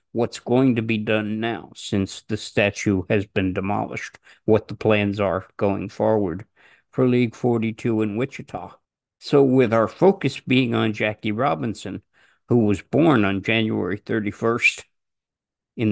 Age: 50-69